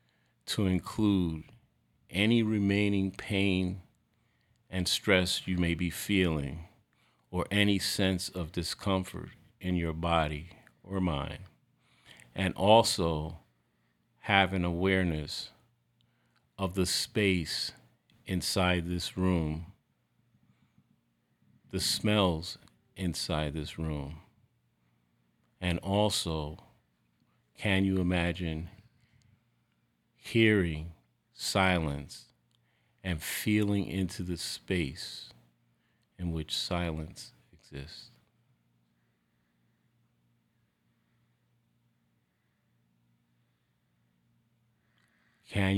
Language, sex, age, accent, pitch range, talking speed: English, male, 40-59, American, 75-100 Hz, 70 wpm